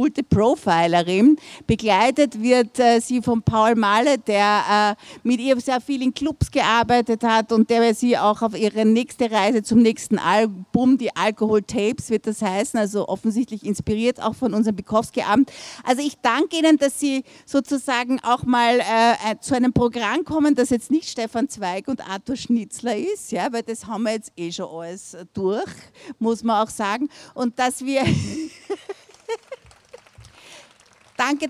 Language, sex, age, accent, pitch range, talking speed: German, female, 50-69, Austrian, 220-270 Hz, 160 wpm